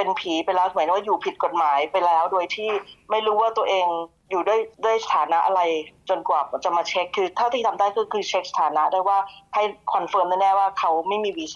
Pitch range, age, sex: 175-215 Hz, 20-39, female